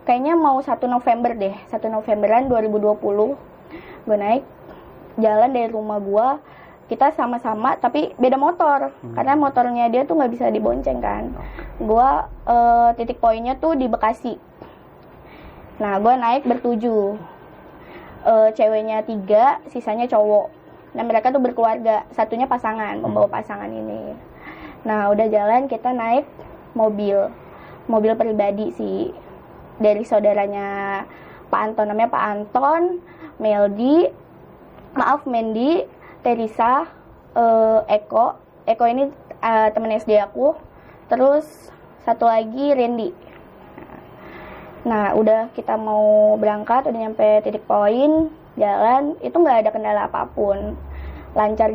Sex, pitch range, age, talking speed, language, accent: female, 215-255 Hz, 20-39, 115 wpm, Indonesian, native